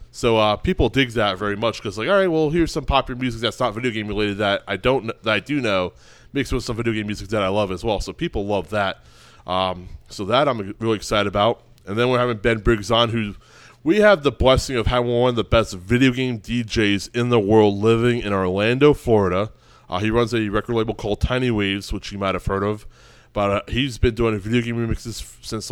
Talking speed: 240 wpm